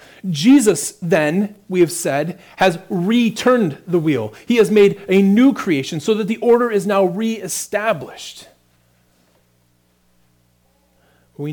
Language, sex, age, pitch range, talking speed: English, male, 30-49, 125-200 Hz, 125 wpm